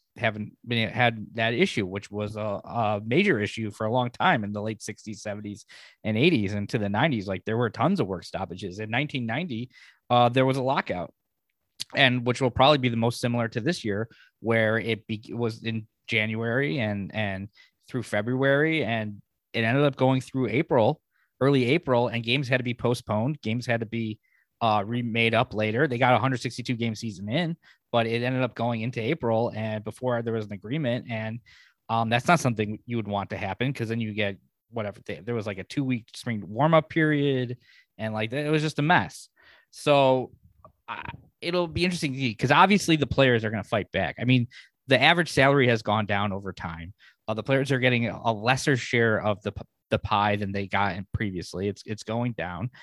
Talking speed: 205 wpm